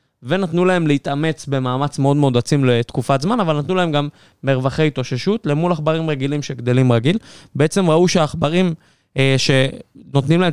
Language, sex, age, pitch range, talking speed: Hebrew, male, 20-39, 130-160 Hz, 150 wpm